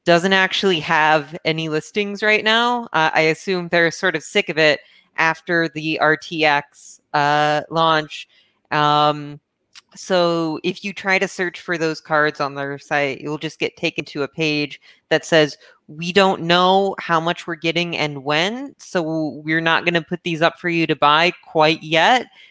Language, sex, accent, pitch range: English, female, American, 150-175 Hz